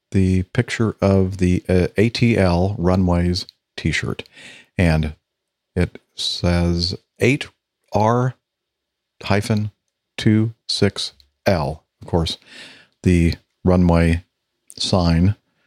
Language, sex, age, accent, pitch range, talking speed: English, male, 50-69, American, 85-105 Hz, 65 wpm